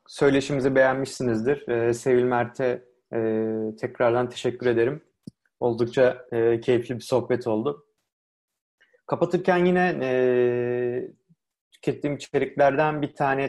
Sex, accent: male, native